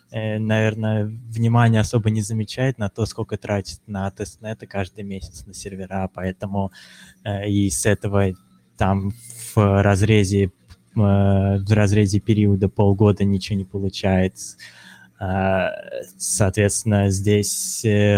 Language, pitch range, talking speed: Russian, 95-105 Hz, 120 wpm